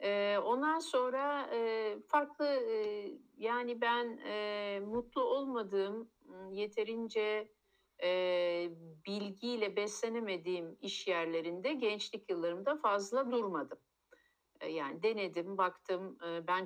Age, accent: 60-79, native